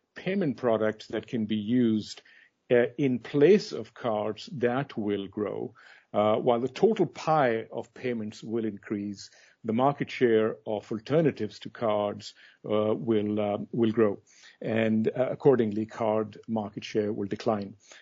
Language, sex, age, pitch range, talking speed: English, male, 50-69, 110-130 Hz, 145 wpm